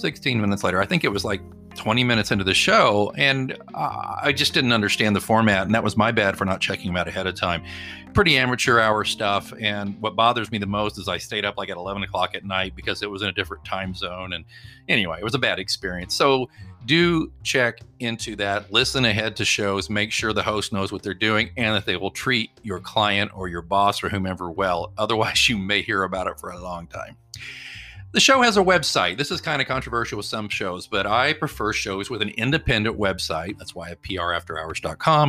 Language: English